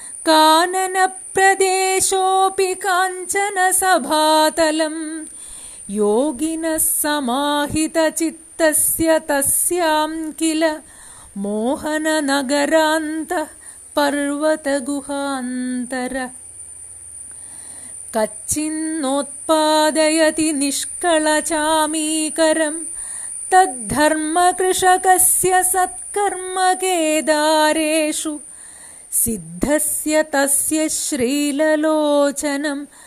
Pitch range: 285-320 Hz